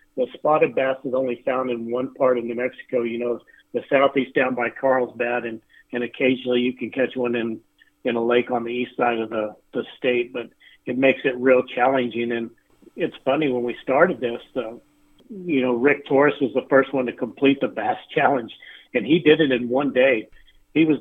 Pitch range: 120-140 Hz